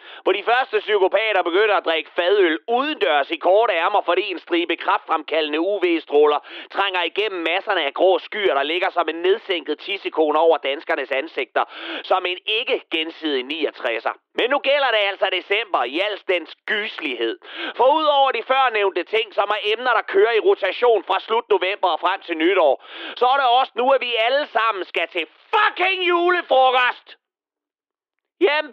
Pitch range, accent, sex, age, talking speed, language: 235-395 Hz, native, male, 30-49, 165 wpm, Danish